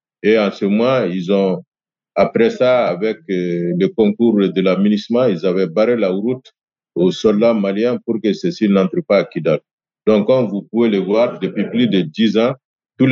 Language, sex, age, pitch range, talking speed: French, male, 50-69, 100-125 Hz, 190 wpm